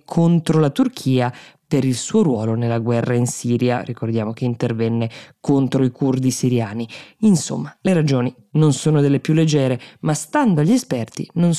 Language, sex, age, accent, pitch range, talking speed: Italian, female, 20-39, native, 125-150 Hz, 160 wpm